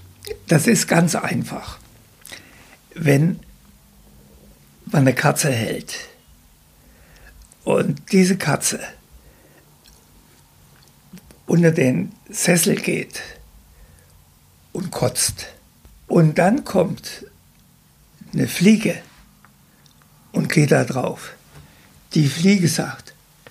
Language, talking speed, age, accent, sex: German, 75 wpm, 60-79, German, male